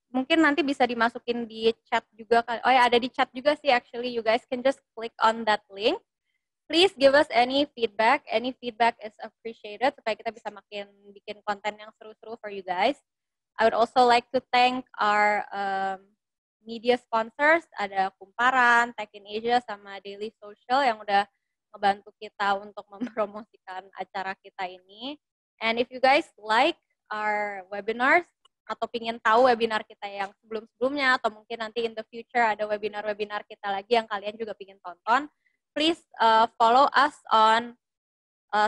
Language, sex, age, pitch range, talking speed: Indonesian, female, 20-39, 210-245 Hz, 165 wpm